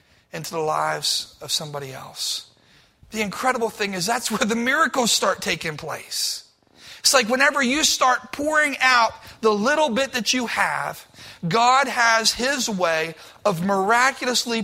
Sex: male